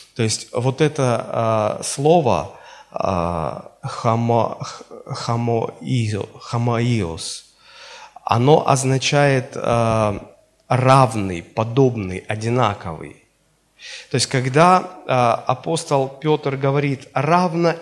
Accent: native